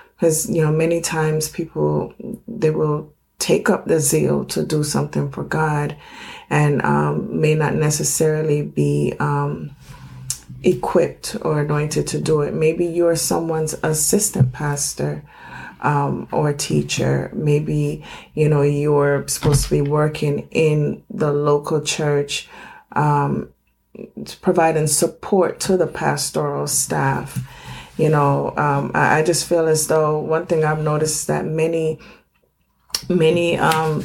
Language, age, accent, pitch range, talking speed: English, 30-49, American, 145-160 Hz, 130 wpm